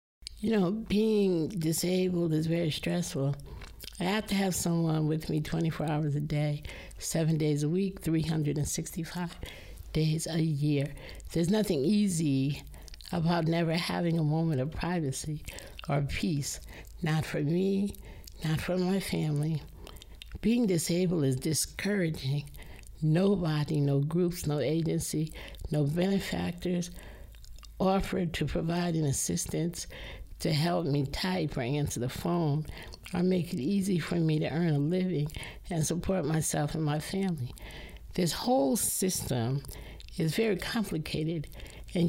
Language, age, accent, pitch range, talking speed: English, 60-79, American, 150-185 Hz, 130 wpm